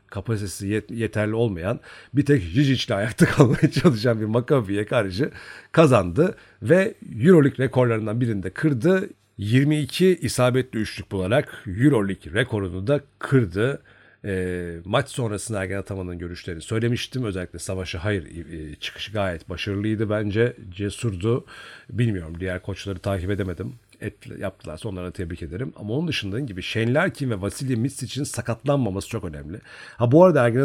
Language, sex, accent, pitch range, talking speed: Turkish, male, native, 100-135 Hz, 135 wpm